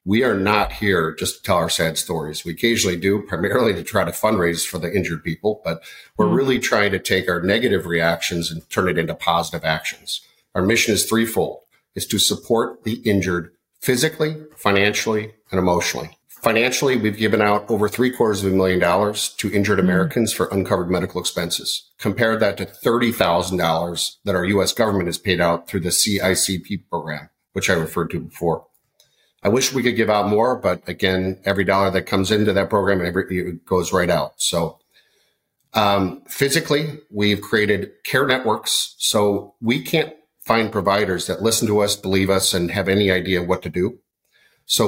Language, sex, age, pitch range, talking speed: English, male, 50-69, 90-110 Hz, 180 wpm